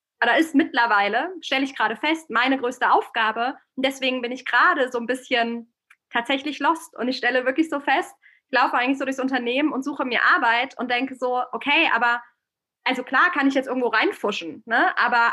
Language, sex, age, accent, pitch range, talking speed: German, female, 20-39, German, 240-300 Hz, 195 wpm